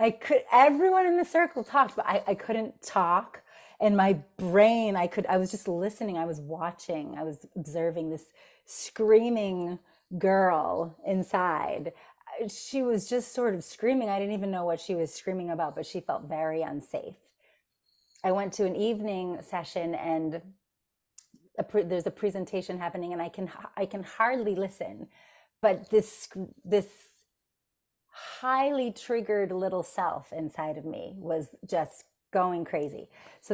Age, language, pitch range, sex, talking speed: 30-49, English, 170-220 Hz, female, 155 wpm